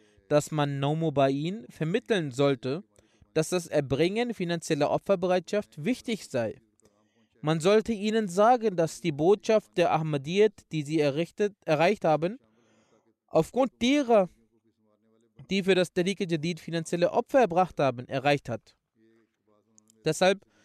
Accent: German